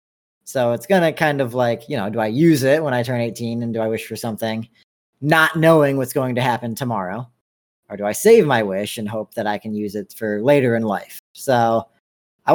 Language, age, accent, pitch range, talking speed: English, 40-59, American, 105-135 Hz, 235 wpm